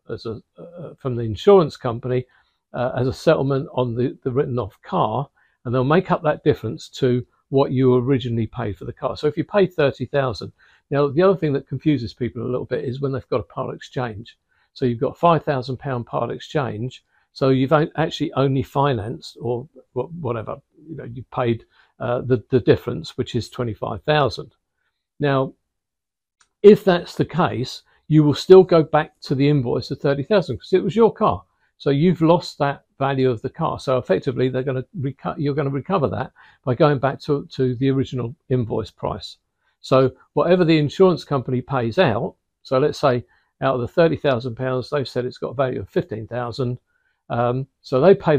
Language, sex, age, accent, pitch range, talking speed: English, male, 50-69, British, 125-150 Hz, 190 wpm